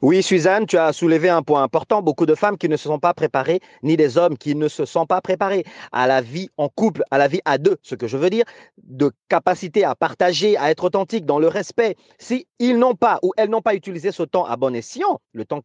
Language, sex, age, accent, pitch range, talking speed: French, male, 30-49, French, 150-210 Hz, 255 wpm